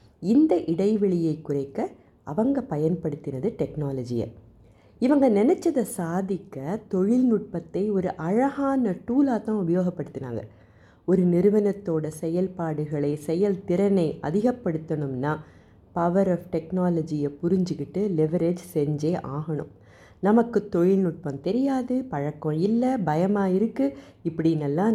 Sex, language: female, Tamil